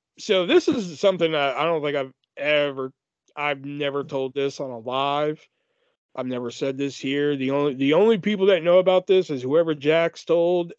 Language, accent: English, American